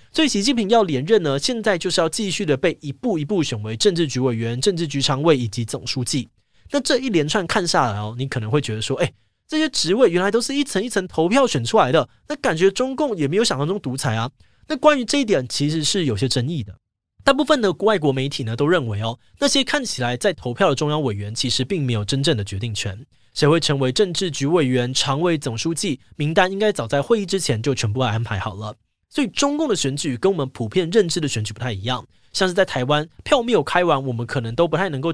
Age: 20-39